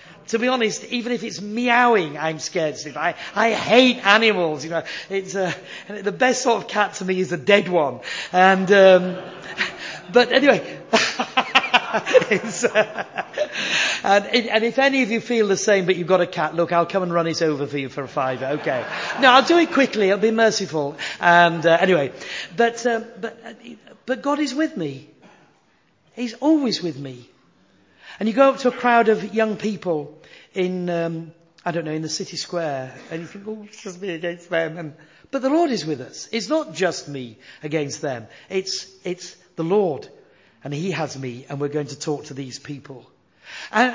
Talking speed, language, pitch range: 195 wpm, English, 165-230 Hz